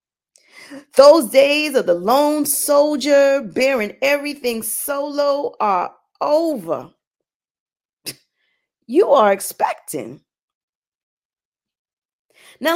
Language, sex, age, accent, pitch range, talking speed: English, female, 40-59, American, 205-290 Hz, 70 wpm